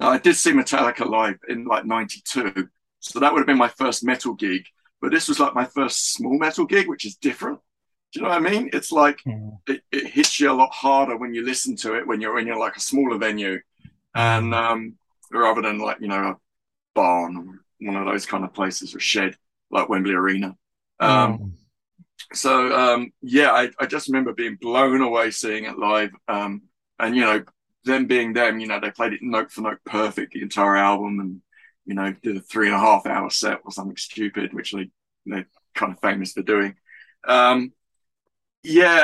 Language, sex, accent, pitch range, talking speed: English, male, British, 105-145 Hz, 205 wpm